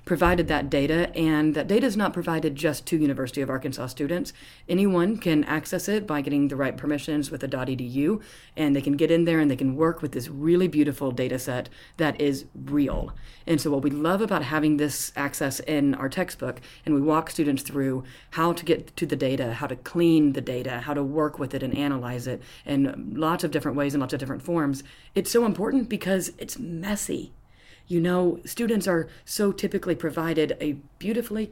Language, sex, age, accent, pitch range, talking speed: English, female, 30-49, American, 140-165 Hz, 205 wpm